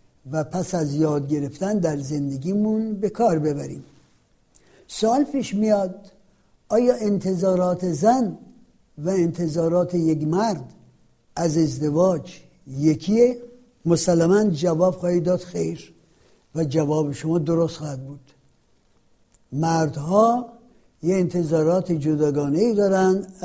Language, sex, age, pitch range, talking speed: Persian, male, 60-79, 160-215 Hz, 95 wpm